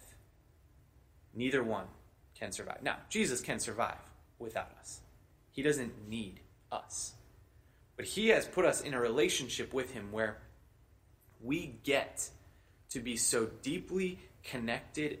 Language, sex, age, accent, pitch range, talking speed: English, male, 20-39, American, 110-145 Hz, 125 wpm